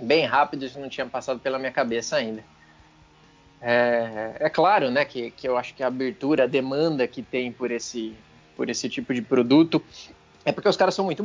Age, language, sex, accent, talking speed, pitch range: 20-39, English, male, Brazilian, 195 wpm, 115-150 Hz